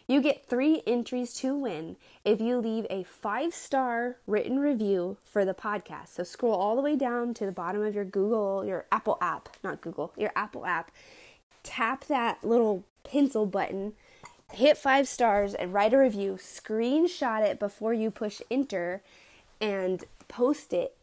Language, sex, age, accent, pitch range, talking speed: English, female, 20-39, American, 200-270 Hz, 165 wpm